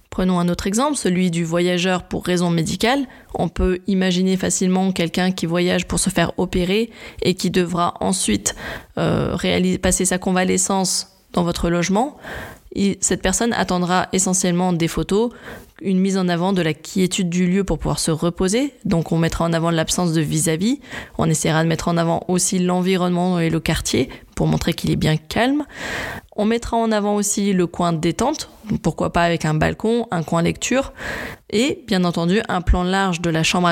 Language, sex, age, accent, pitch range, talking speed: French, female, 20-39, French, 175-205 Hz, 180 wpm